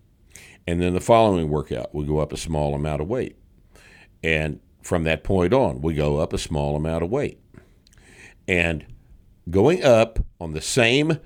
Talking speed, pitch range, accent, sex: 170 wpm, 80-110 Hz, American, male